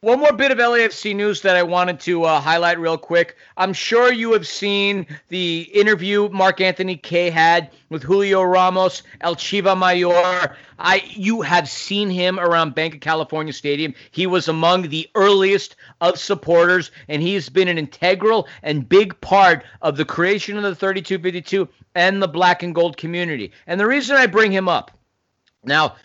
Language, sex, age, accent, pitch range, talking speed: English, male, 40-59, American, 170-205 Hz, 175 wpm